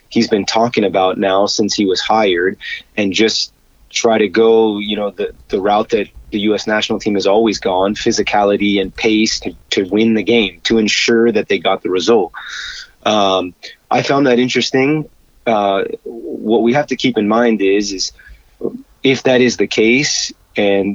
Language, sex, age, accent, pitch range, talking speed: English, male, 30-49, American, 100-120 Hz, 185 wpm